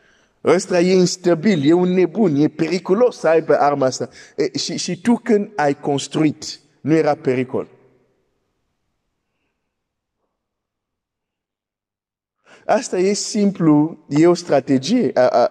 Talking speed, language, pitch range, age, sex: 95 wpm, Romanian, 140-195 Hz, 50-69, male